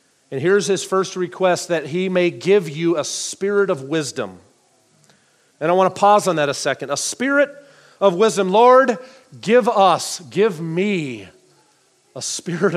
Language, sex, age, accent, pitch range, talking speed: English, male, 40-59, American, 155-200 Hz, 160 wpm